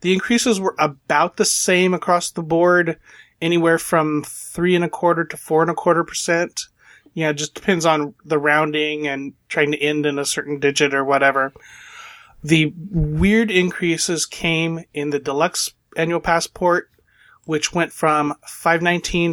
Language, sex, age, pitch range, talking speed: English, male, 30-49, 150-170 Hz, 160 wpm